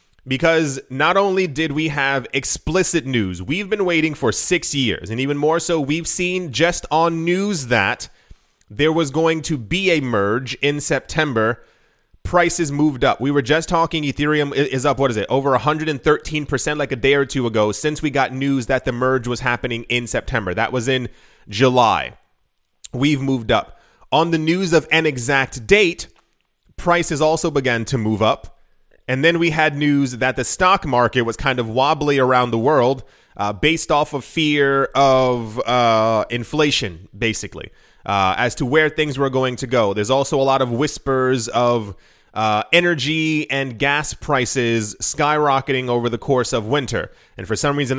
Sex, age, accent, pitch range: male, 30-49, American, 125-155 Hz